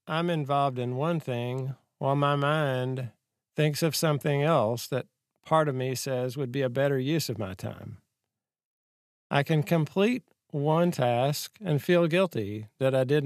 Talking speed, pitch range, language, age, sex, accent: 165 wpm, 125-160 Hz, English, 50-69, male, American